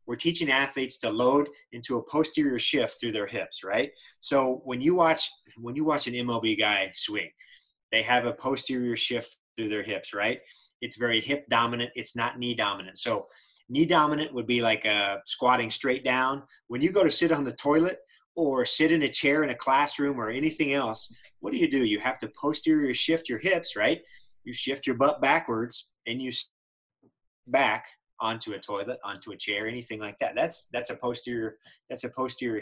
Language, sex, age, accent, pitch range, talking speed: English, male, 30-49, American, 120-145 Hz, 195 wpm